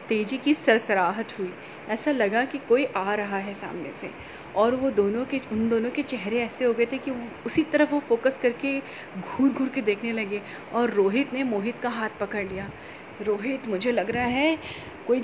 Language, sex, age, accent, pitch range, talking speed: Hindi, female, 30-49, native, 205-265 Hz, 195 wpm